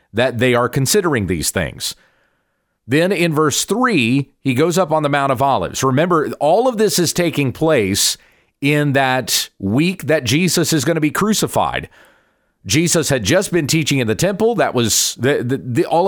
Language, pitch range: English, 125-165 Hz